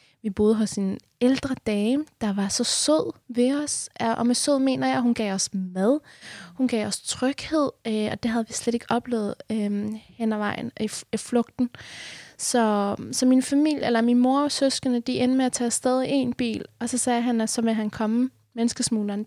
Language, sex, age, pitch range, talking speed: Danish, female, 20-39, 215-250 Hz, 200 wpm